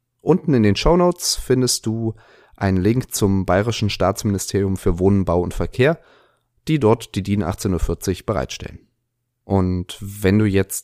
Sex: male